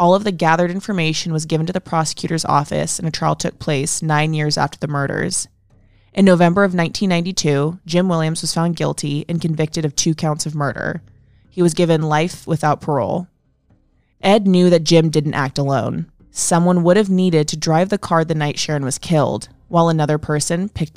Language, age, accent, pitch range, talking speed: English, 20-39, American, 150-175 Hz, 190 wpm